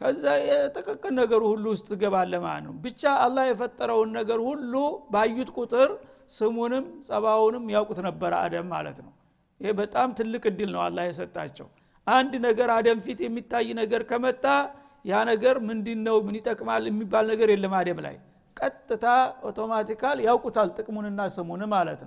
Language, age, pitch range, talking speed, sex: Amharic, 60-79, 210-245 Hz, 115 wpm, male